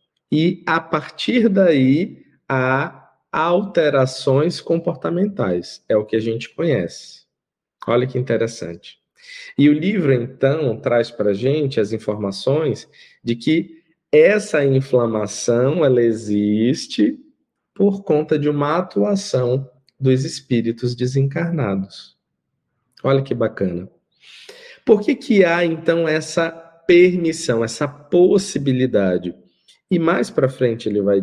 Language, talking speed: Portuguese, 110 wpm